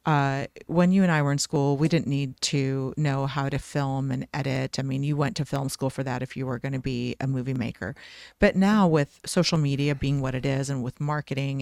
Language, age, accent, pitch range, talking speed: English, 40-59, American, 135-160 Hz, 250 wpm